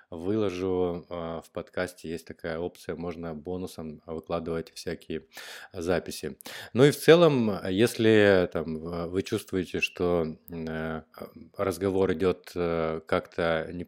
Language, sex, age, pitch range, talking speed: Russian, male, 20-39, 85-105 Hz, 105 wpm